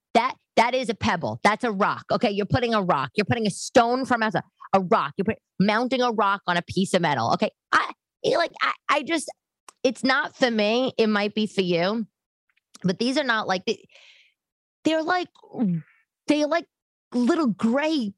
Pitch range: 155-230 Hz